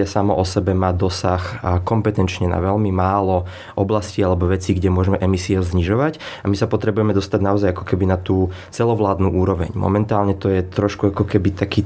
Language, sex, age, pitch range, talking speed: Slovak, male, 20-39, 95-105 Hz, 175 wpm